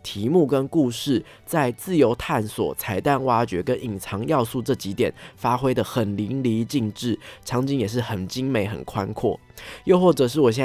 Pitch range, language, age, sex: 110-145 Hz, Chinese, 20-39, male